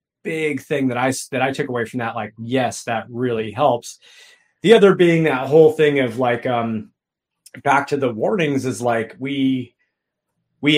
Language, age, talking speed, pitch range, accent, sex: English, 20-39, 180 wpm, 105-135 Hz, American, male